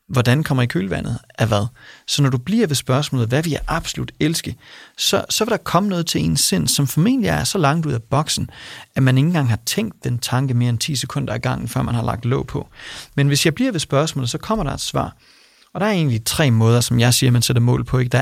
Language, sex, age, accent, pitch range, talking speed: Danish, male, 30-49, native, 125-165 Hz, 255 wpm